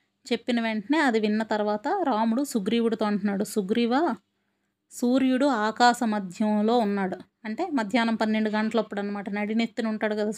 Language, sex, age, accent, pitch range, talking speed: Telugu, female, 20-39, native, 210-250 Hz, 115 wpm